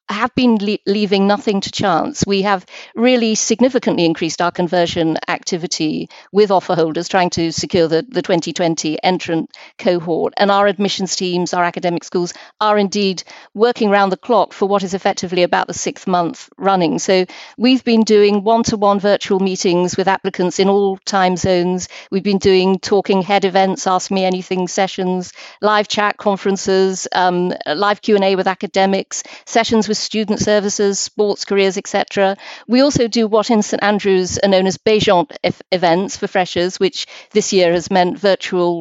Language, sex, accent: English, female, British